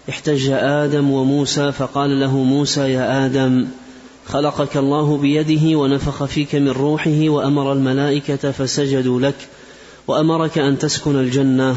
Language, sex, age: Arabic, male, 30-49